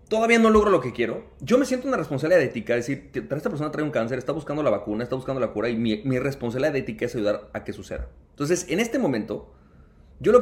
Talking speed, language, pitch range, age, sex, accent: 255 wpm, Spanish, 105-140 Hz, 30-49, male, Mexican